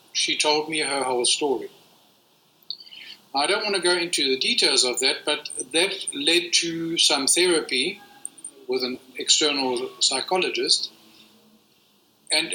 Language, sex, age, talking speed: English, male, 50-69, 130 wpm